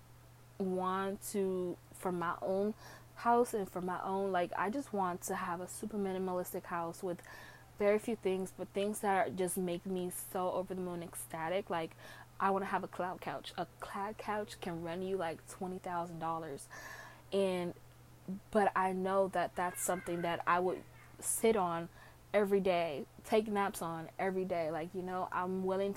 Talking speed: 180 wpm